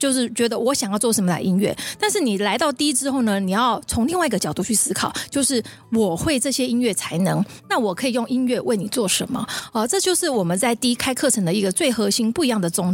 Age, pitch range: 30-49, 205-260 Hz